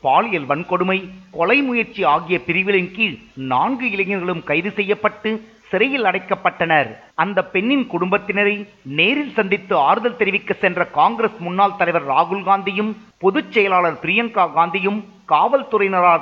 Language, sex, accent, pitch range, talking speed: Tamil, male, native, 175-215 Hz, 85 wpm